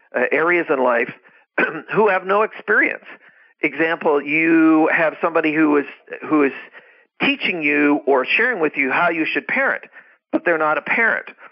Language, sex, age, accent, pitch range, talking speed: English, male, 50-69, American, 140-180 Hz, 160 wpm